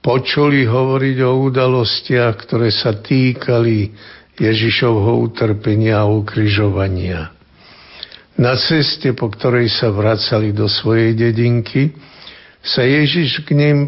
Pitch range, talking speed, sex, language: 110-125 Hz, 105 wpm, male, Slovak